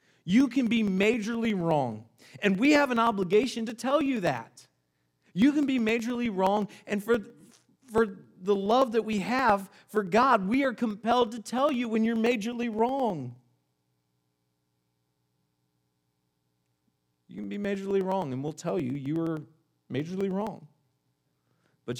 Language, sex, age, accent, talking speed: English, male, 40-59, American, 145 wpm